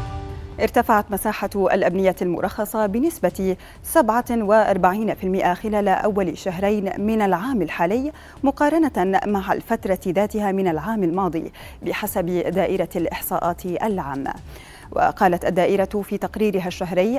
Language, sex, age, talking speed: Arabic, female, 30-49, 100 wpm